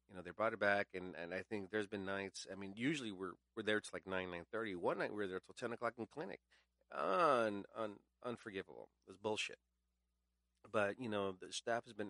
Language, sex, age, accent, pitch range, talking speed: English, male, 40-59, American, 80-100 Hz, 230 wpm